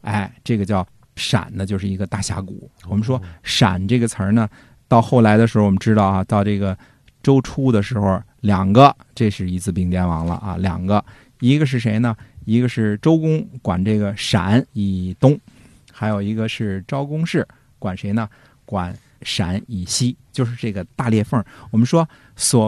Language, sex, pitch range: Chinese, male, 100-125 Hz